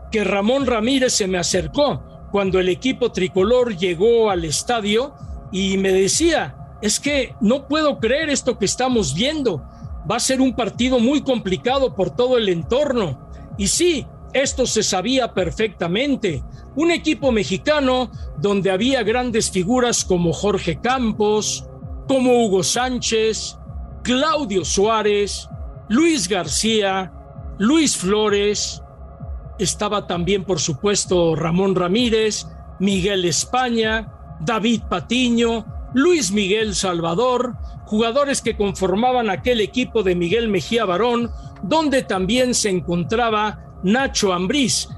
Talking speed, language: 120 wpm, English